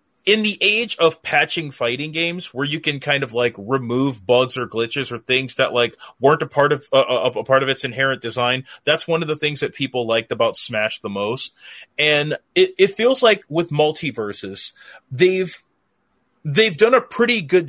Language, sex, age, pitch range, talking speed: English, male, 30-49, 130-170 Hz, 195 wpm